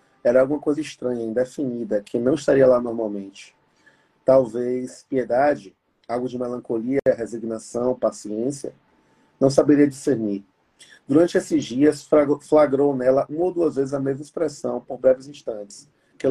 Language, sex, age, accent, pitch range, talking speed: Portuguese, male, 40-59, Brazilian, 125-150 Hz, 135 wpm